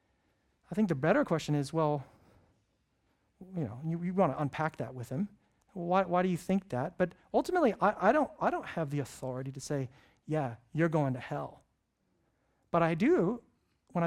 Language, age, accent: English, 40-59, American